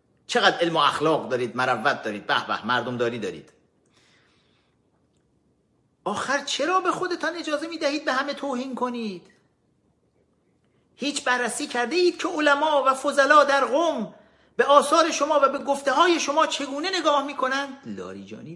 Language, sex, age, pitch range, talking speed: Persian, male, 50-69, 230-310 Hz, 140 wpm